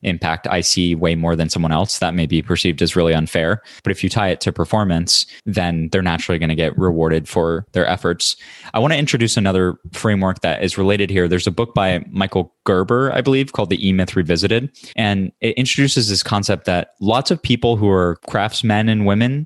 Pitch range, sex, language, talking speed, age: 90-110 Hz, male, English, 210 wpm, 20-39